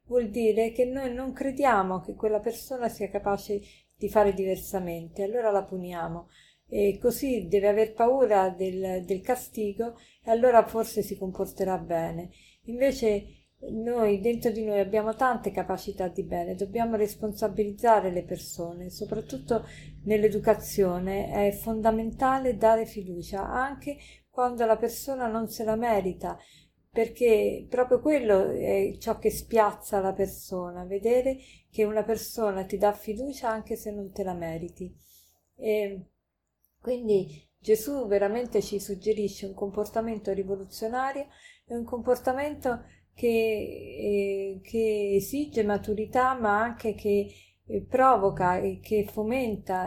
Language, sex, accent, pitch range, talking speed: Italian, female, native, 195-230 Hz, 125 wpm